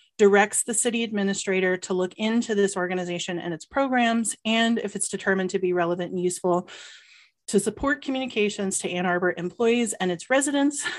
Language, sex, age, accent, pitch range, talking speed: English, female, 30-49, American, 185-215 Hz, 170 wpm